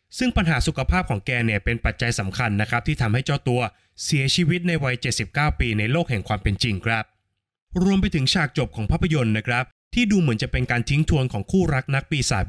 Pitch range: 110-150 Hz